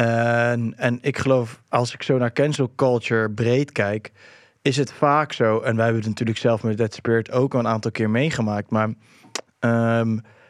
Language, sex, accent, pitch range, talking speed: English, male, Dutch, 115-145 Hz, 190 wpm